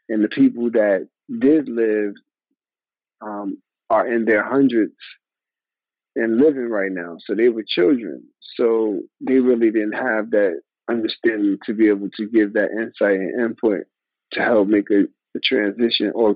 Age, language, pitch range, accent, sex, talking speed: 50-69, English, 110-140 Hz, American, male, 155 wpm